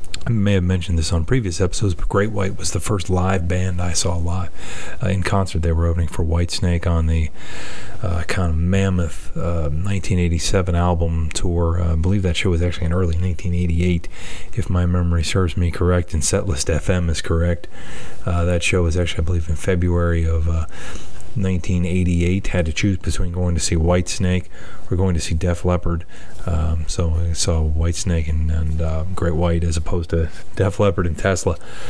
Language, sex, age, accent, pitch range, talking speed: English, male, 30-49, American, 85-95 Hz, 200 wpm